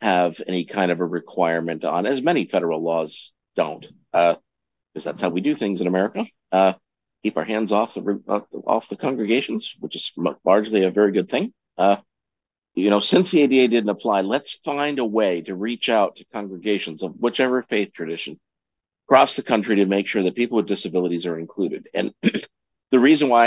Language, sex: English, male